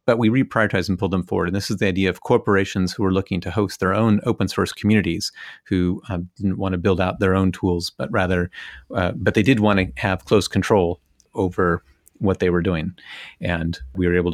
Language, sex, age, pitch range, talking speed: English, male, 30-49, 90-110 Hz, 225 wpm